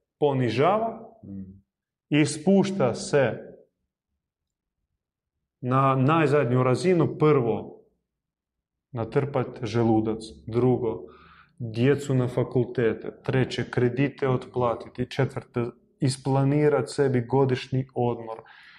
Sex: male